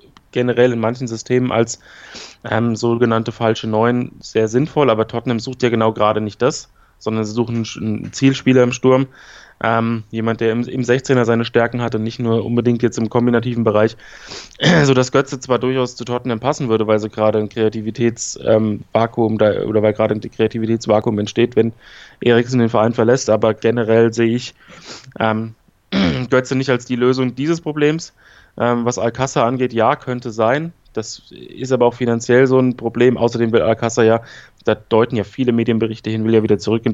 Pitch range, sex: 110-125 Hz, male